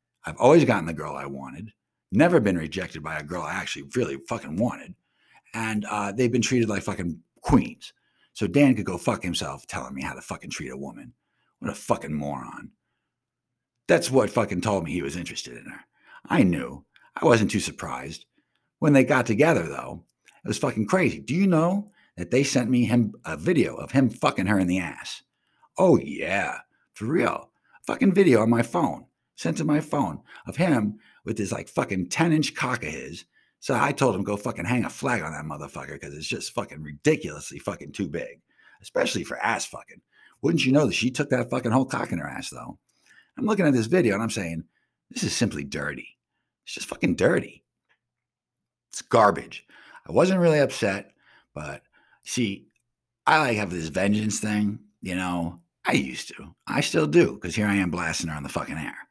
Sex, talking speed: male, 200 wpm